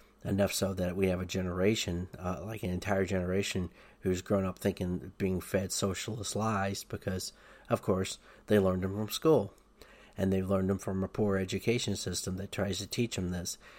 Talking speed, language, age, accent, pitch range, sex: 185 wpm, English, 40-59, American, 90-100 Hz, male